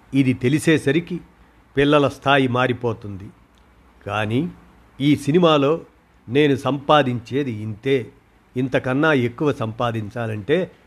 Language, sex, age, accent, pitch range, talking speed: Telugu, male, 50-69, native, 115-140 Hz, 75 wpm